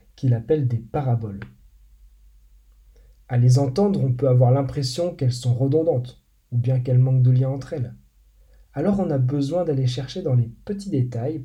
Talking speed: 170 wpm